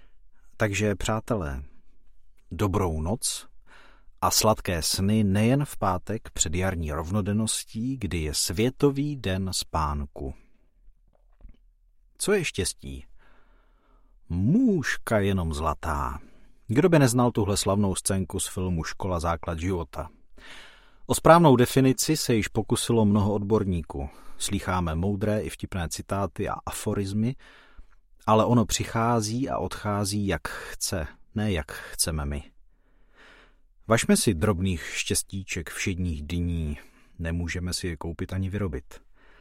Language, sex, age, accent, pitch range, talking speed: Czech, male, 40-59, native, 85-110 Hz, 110 wpm